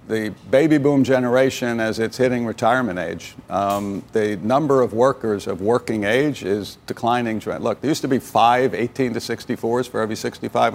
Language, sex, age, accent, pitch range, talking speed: English, male, 60-79, American, 110-130 Hz, 175 wpm